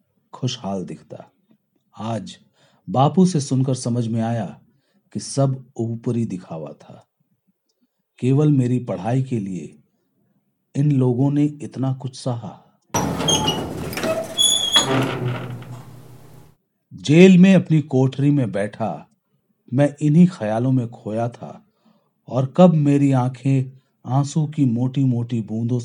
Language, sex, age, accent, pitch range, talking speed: Hindi, male, 50-69, native, 120-160 Hz, 105 wpm